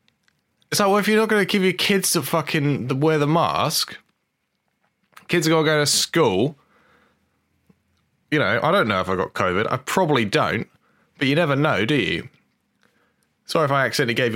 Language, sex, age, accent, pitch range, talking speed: English, male, 20-39, British, 100-155 Hz, 185 wpm